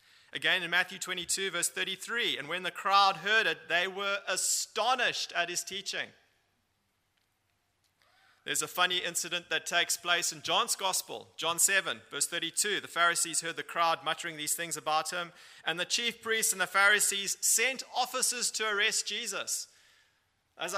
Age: 30-49